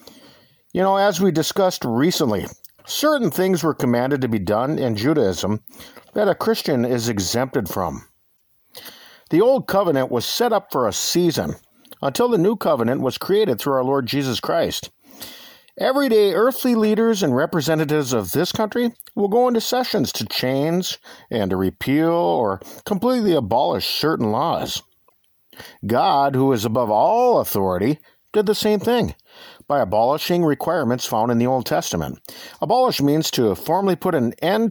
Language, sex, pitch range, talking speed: English, male, 130-210 Hz, 150 wpm